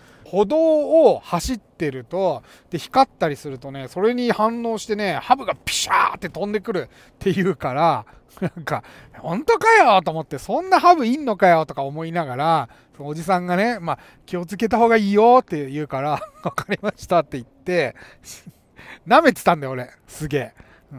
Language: Japanese